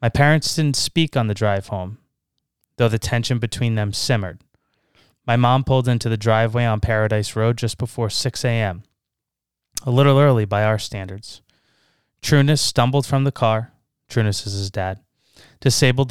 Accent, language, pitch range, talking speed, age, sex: American, English, 105-125 Hz, 160 wpm, 20-39, male